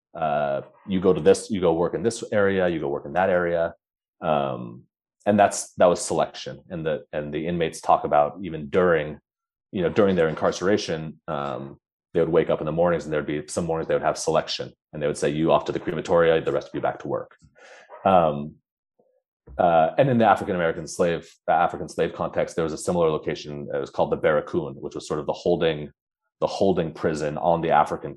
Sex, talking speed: male, 220 wpm